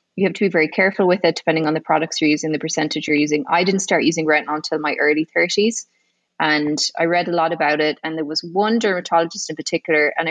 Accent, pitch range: Irish, 155-180 Hz